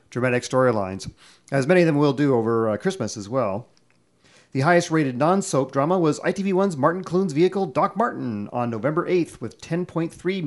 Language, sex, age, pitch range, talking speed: English, male, 40-59, 115-160 Hz, 165 wpm